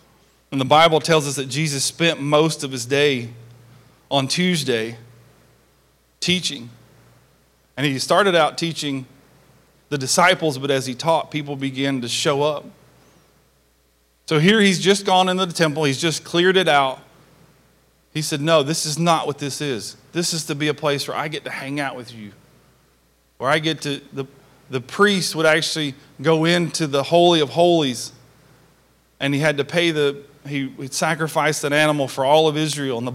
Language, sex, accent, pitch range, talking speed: English, male, American, 135-160 Hz, 175 wpm